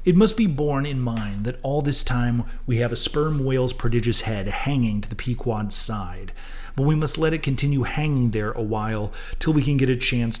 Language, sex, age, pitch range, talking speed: English, male, 30-49, 115-145 Hz, 220 wpm